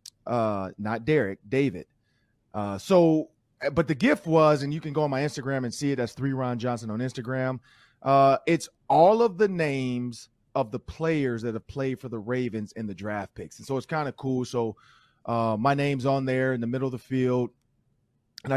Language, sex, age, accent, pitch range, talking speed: English, male, 30-49, American, 110-135 Hz, 205 wpm